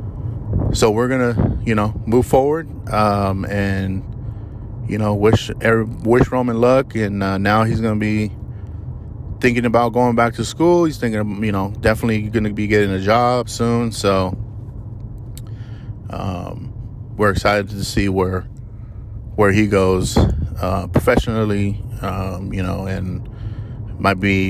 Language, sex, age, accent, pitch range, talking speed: English, male, 30-49, American, 100-115 Hz, 135 wpm